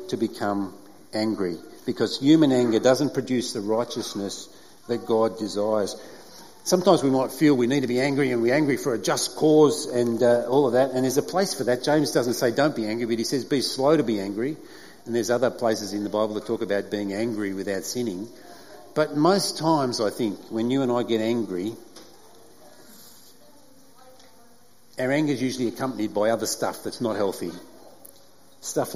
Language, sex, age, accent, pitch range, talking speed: English, male, 50-69, Australian, 110-145 Hz, 190 wpm